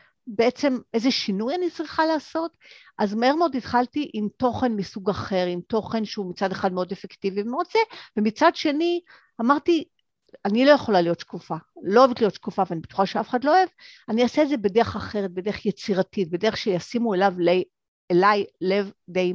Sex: female